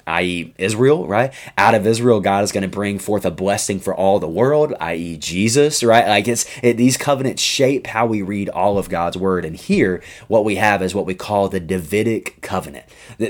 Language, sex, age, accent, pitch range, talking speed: English, male, 20-39, American, 95-115 Hz, 210 wpm